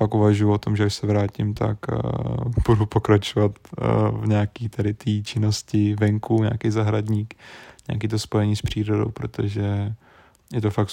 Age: 20-39